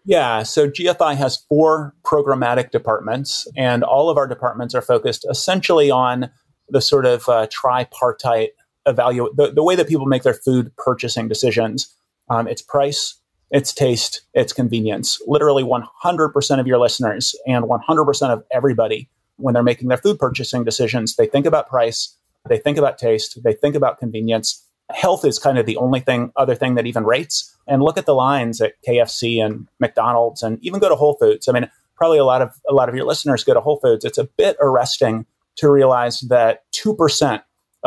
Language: English